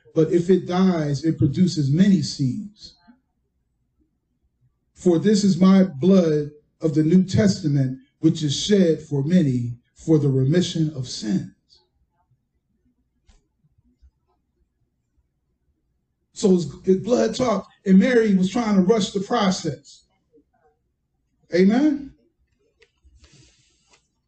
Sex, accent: male, American